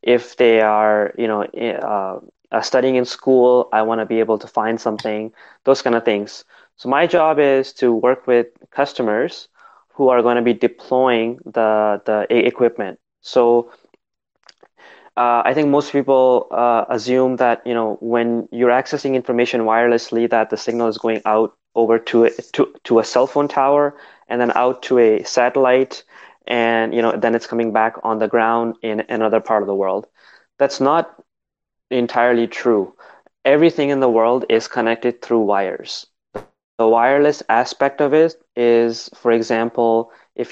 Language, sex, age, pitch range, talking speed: English, male, 20-39, 110-125 Hz, 165 wpm